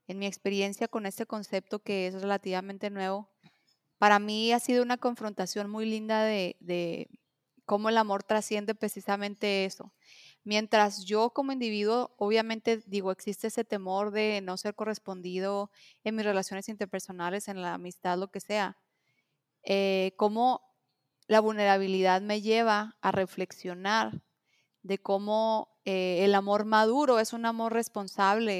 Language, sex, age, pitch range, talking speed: Spanish, female, 30-49, 195-225 Hz, 140 wpm